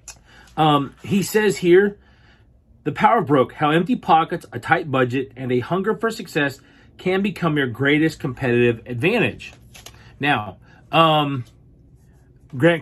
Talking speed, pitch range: 130 wpm, 125-185 Hz